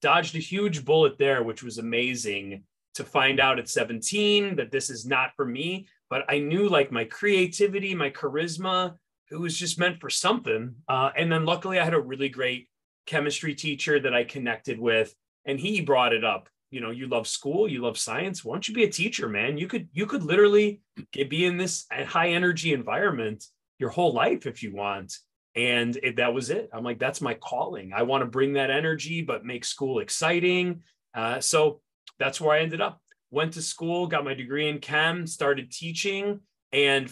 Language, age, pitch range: English, 30-49, 130-180 Hz